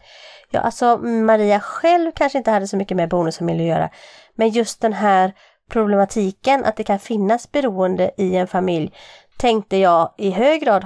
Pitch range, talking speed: 185-240 Hz, 170 wpm